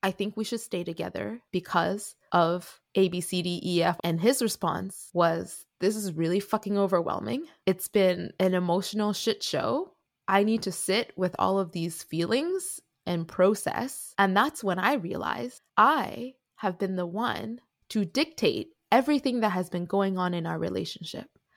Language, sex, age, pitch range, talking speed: English, female, 20-39, 185-250 Hz, 155 wpm